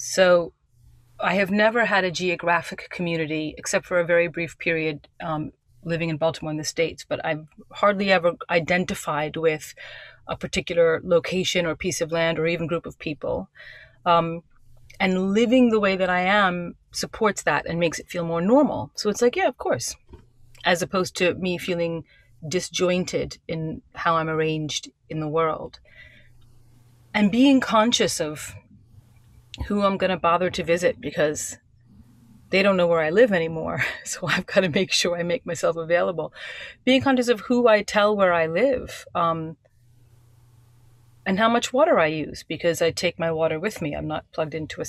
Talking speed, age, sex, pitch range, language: 175 wpm, 30-49, female, 145-185 Hz, English